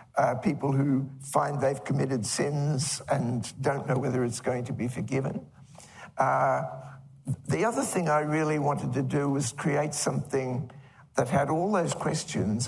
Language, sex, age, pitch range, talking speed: English, male, 60-79, 125-145 Hz, 155 wpm